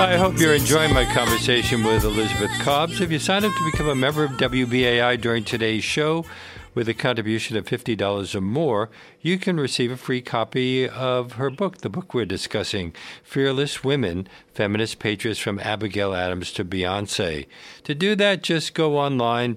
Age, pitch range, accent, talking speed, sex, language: 50-69, 100-140 Hz, American, 180 wpm, male, English